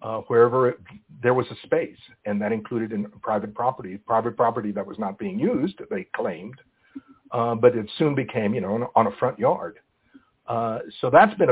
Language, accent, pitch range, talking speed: English, American, 110-135 Hz, 200 wpm